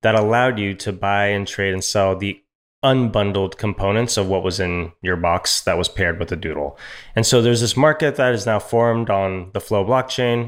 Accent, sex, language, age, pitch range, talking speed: American, male, English, 20-39, 100-120 Hz, 210 wpm